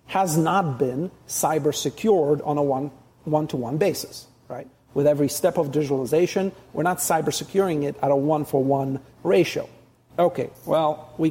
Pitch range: 140-190 Hz